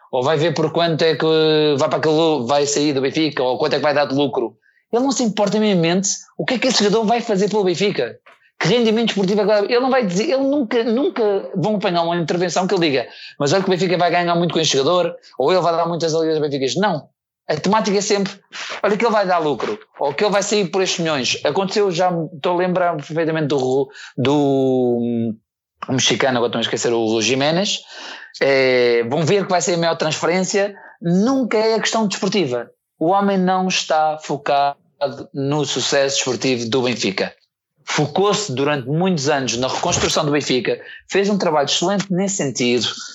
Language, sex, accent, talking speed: Portuguese, male, Portuguese, 210 wpm